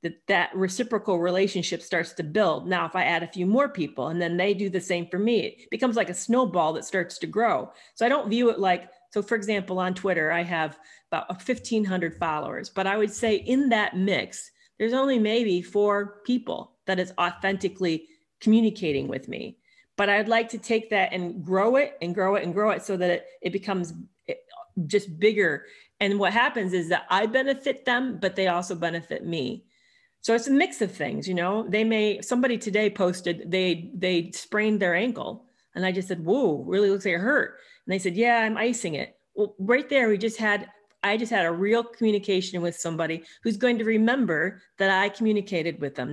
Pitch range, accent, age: 180-225 Hz, American, 40-59